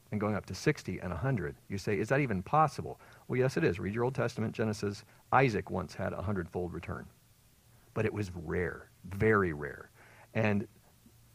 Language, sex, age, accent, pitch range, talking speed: English, male, 40-59, American, 105-155 Hz, 185 wpm